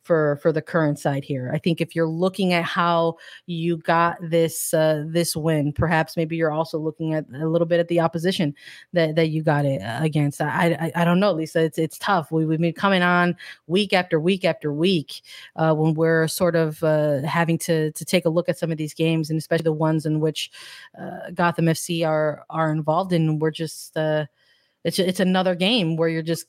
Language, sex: English, female